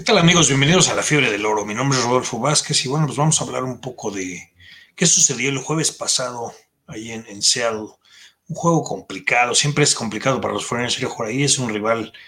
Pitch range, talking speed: 110-145 Hz, 230 wpm